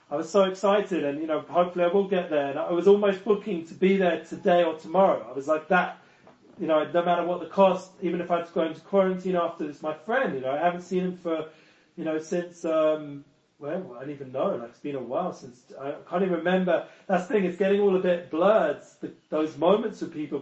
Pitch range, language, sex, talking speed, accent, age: 155-180 Hz, English, male, 255 wpm, British, 30-49